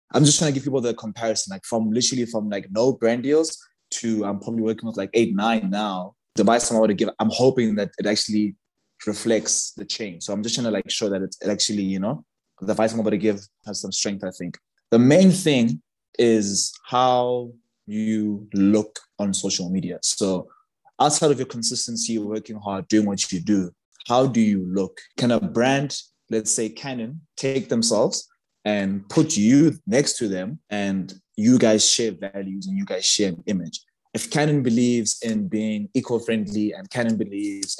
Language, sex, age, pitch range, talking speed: English, male, 20-39, 105-125 Hz, 190 wpm